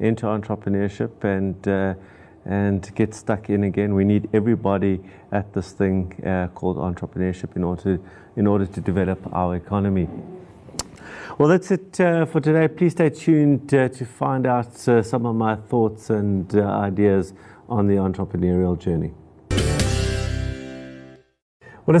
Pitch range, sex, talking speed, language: 100-125 Hz, male, 145 wpm, English